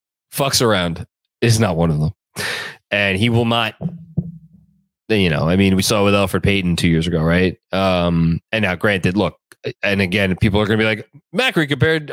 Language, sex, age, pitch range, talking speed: English, male, 20-39, 95-130 Hz, 190 wpm